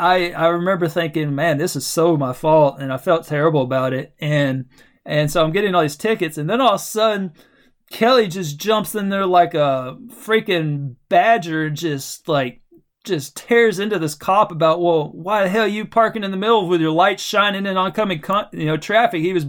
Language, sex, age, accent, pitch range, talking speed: English, male, 20-39, American, 155-205 Hz, 210 wpm